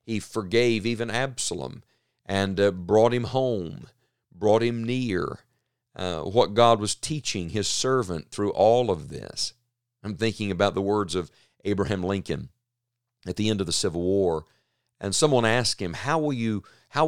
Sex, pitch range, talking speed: male, 95-125 Hz, 155 wpm